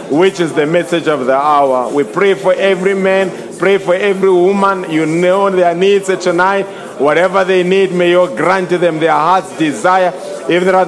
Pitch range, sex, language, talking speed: 180-200 Hz, male, English, 190 wpm